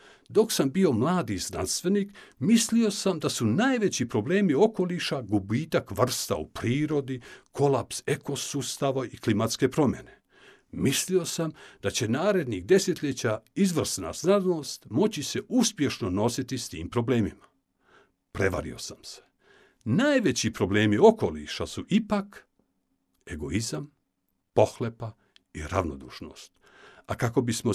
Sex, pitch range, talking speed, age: male, 105-165 Hz, 110 wpm, 60-79